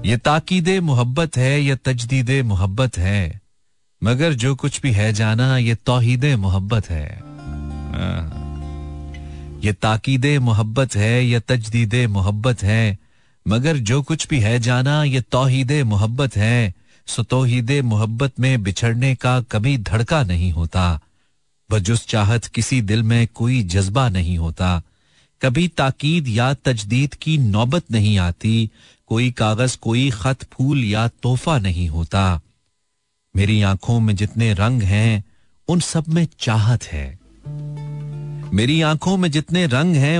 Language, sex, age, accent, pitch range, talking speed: Hindi, male, 40-59, native, 100-140 Hz, 135 wpm